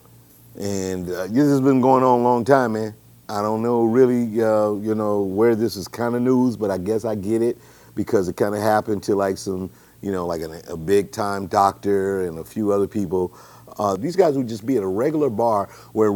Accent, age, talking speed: American, 50-69, 230 wpm